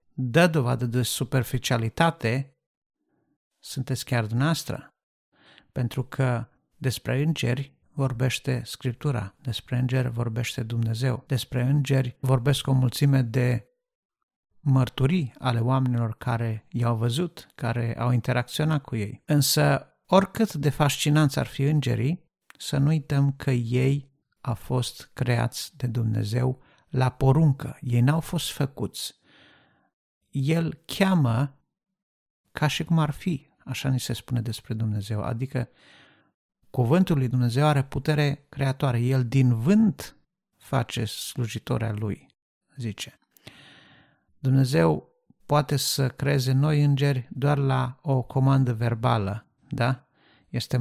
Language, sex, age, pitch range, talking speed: Romanian, male, 50-69, 120-145 Hz, 115 wpm